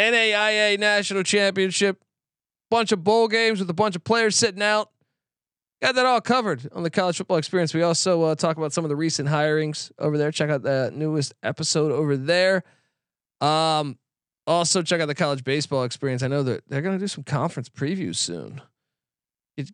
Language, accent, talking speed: English, American, 190 wpm